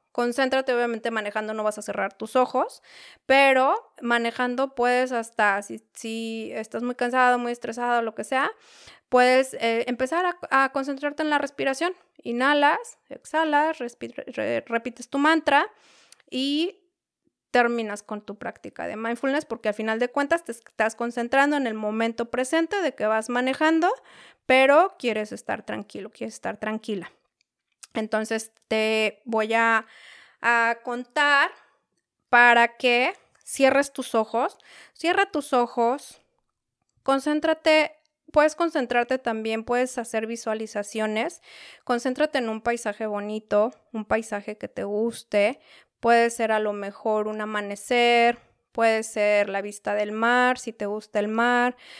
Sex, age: female, 20-39